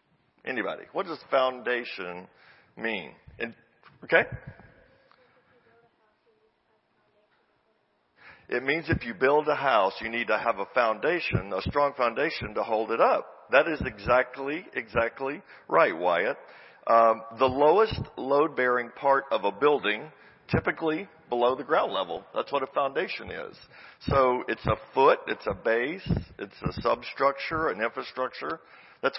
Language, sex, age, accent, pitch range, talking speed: English, male, 50-69, American, 115-145 Hz, 130 wpm